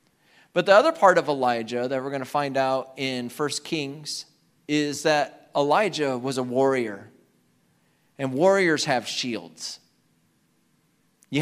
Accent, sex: American, male